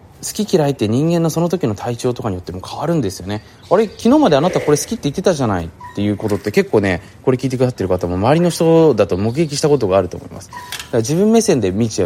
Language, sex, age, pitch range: Japanese, male, 20-39, 95-160 Hz